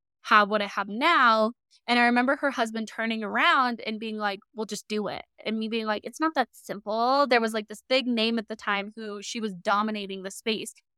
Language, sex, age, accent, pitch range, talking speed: English, female, 10-29, American, 205-240 Hz, 230 wpm